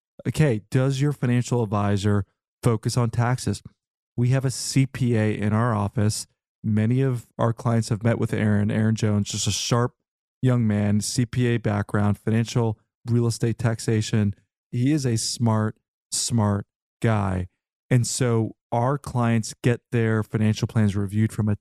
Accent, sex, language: American, male, English